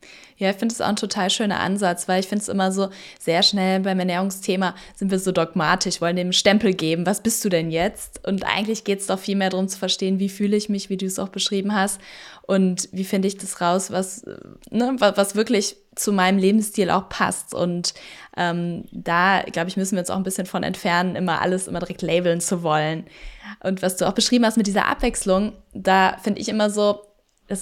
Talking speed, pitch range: 220 wpm, 185-215 Hz